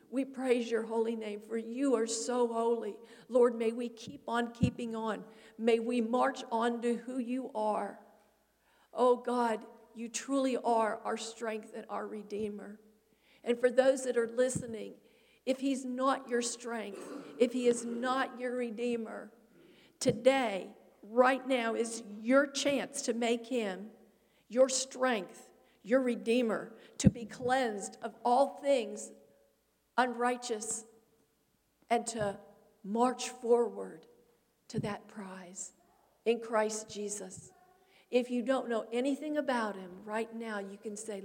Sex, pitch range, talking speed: female, 215-245 Hz, 135 wpm